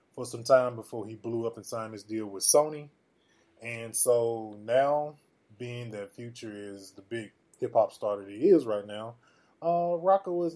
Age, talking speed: 20-39, 180 wpm